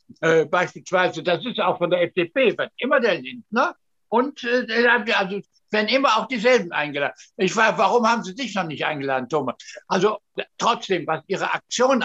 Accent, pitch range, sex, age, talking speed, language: German, 165-220 Hz, male, 60-79, 180 wpm, German